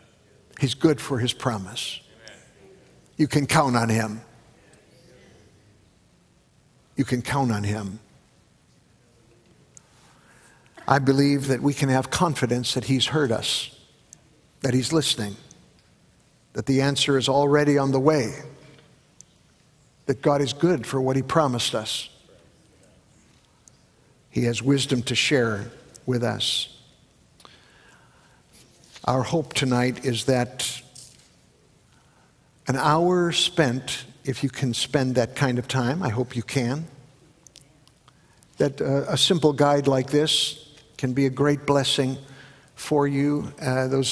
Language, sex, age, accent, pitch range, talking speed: English, male, 60-79, American, 125-150 Hz, 120 wpm